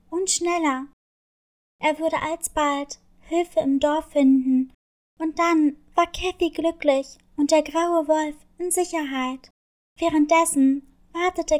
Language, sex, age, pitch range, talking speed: German, female, 20-39, 295-340 Hz, 115 wpm